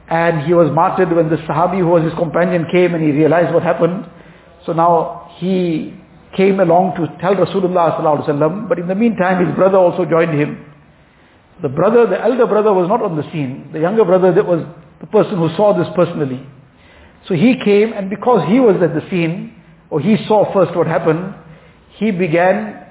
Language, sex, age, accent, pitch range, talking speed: English, male, 50-69, Indian, 160-195 Hz, 195 wpm